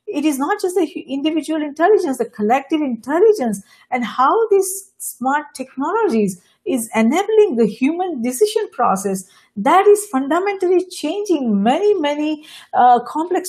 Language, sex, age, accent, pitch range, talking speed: English, female, 50-69, Indian, 230-365 Hz, 130 wpm